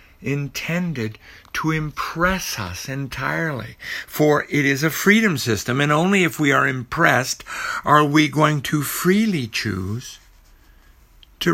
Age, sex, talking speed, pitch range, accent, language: 60-79, male, 125 wpm, 95-140 Hz, American, English